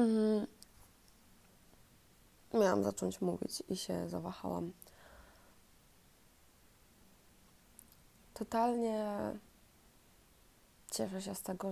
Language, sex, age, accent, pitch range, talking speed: Polish, female, 20-39, native, 165-190 Hz, 55 wpm